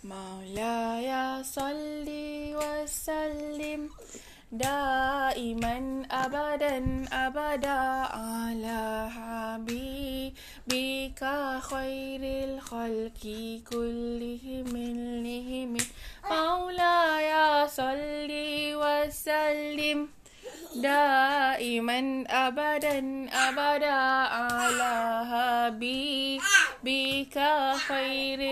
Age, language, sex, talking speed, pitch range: 20-39, Malay, female, 55 wpm, 245-295 Hz